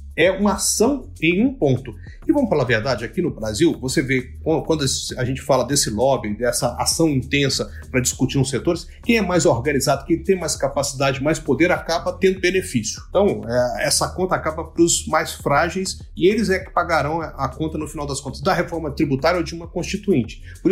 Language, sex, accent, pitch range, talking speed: Portuguese, male, Brazilian, 135-200 Hz, 200 wpm